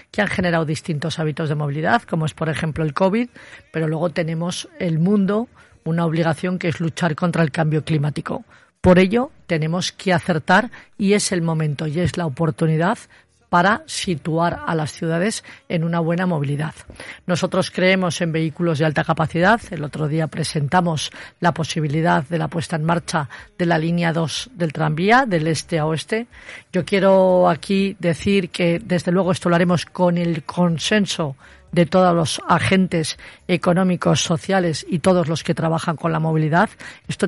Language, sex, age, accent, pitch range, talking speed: Spanish, female, 40-59, Spanish, 160-185 Hz, 170 wpm